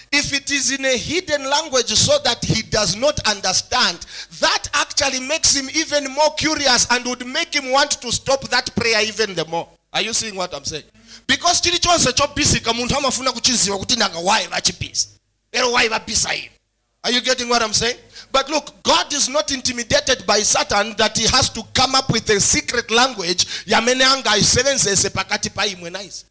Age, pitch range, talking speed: 30-49, 215-280 Hz, 145 wpm